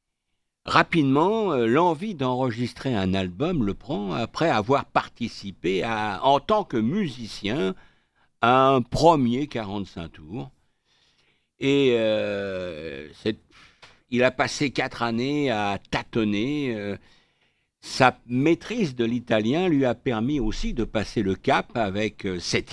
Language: French